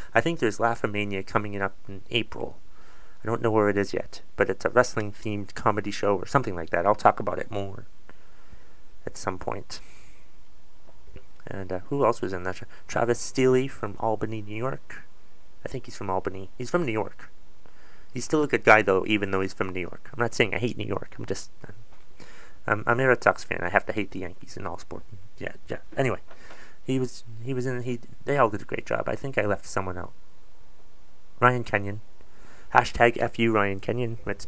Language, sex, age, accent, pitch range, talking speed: English, male, 30-49, American, 95-120 Hz, 210 wpm